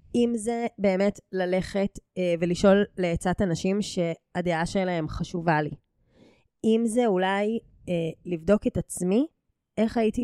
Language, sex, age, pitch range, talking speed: Hebrew, female, 20-39, 175-215 Hz, 125 wpm